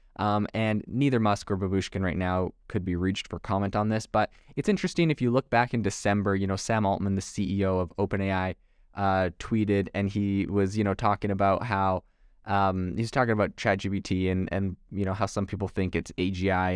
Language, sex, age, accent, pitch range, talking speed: English, male, 20-39, American, 95-110 Hz, 205 wpm